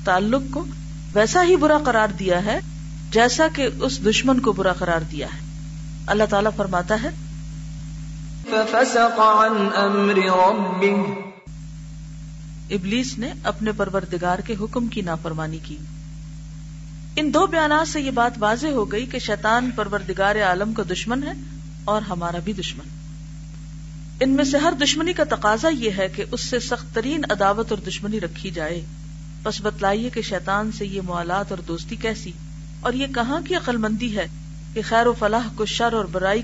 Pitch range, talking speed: 155-230 Hz, 155 wpm